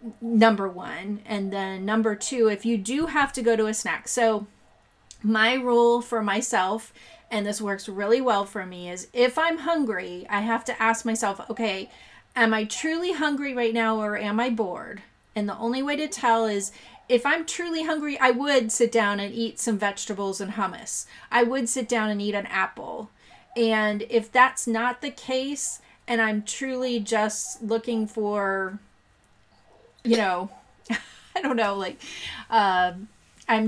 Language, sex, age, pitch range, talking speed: English, female, 30-49, 200-235 Hz, 170 wpm